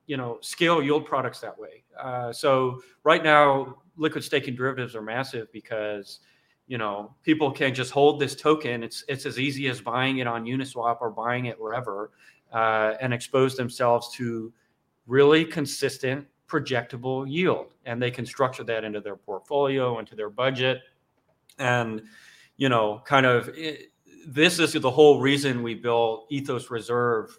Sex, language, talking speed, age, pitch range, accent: male, English, 160 wpm, 40-59, 115-140 Hz, American